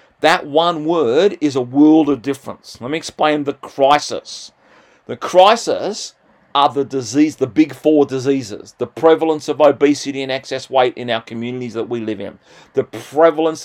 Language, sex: English, male